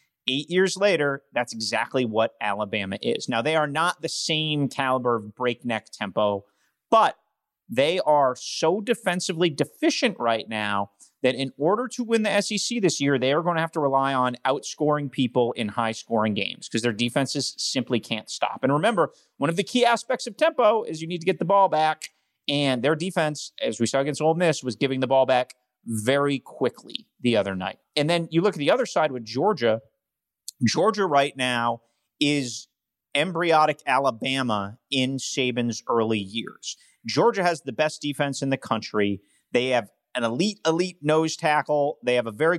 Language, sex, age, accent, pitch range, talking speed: English, male, 30-49, American, 120-165 Hz, 180 wpm